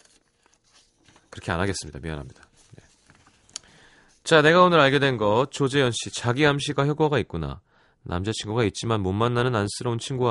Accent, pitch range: native, 90-130 Hz